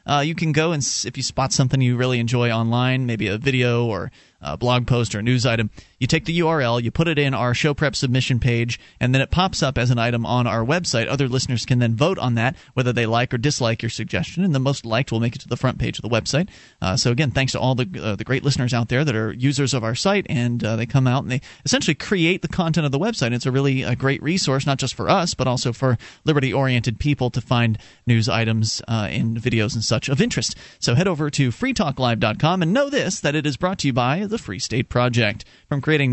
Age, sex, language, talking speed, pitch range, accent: 30-49, male, English, 260 wpm, 120-155 Hz, American